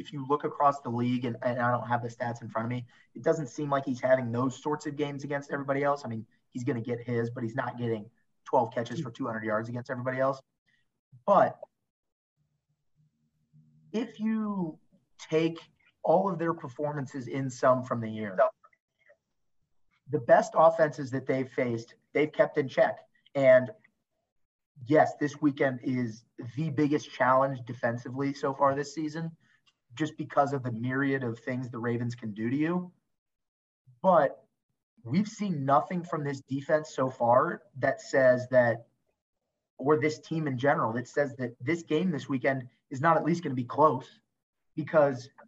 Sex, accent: male, American